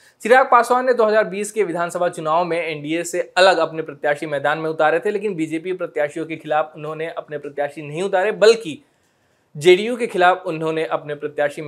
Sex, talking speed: male, 175 wpm